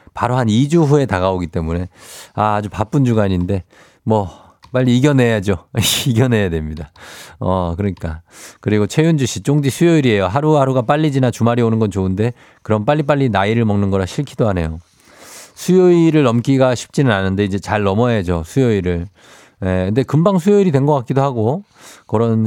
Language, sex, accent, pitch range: Korean, male, native, 100-140 Hz